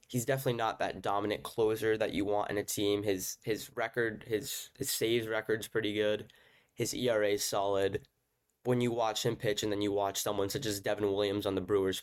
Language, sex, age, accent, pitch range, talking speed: English, male, 10-29, American, 100-110 Hz, 205 wpm